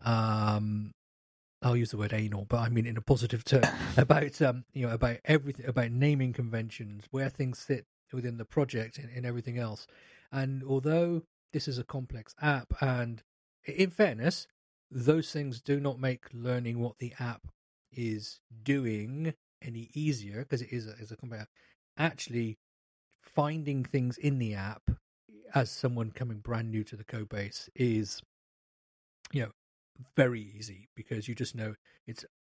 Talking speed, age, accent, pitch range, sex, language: 155 wpm, 40-59, British, 110-135 Hz, male, English